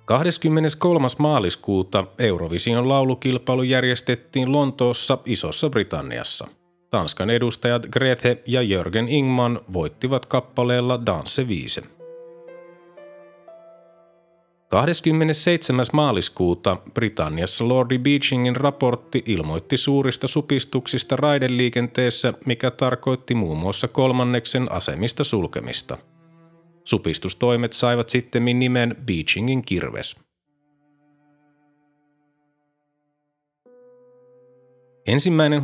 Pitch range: 120-145 Hz